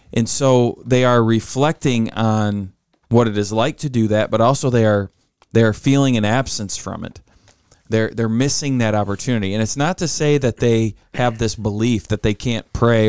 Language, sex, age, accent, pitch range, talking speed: English, male, 20-39, American, 105-125 Hz, 195 wpm